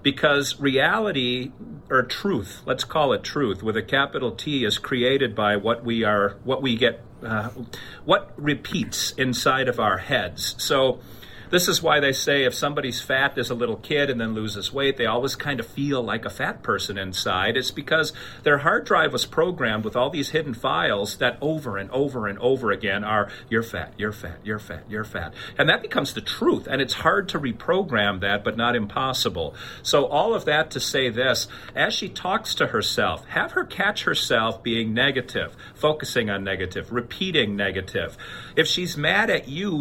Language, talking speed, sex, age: English, 190 wpm, male, 40-59